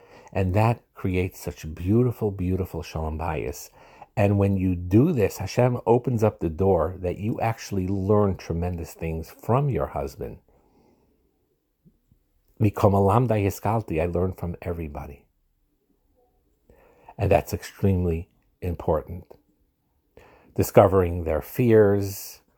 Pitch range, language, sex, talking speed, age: 85-105 Hz, English, male, 100 wpm, 50-69